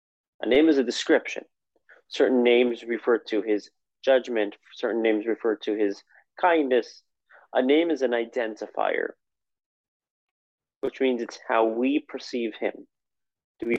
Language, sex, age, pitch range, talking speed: English, male, 30-49, 115-150 Hz, 135 wpm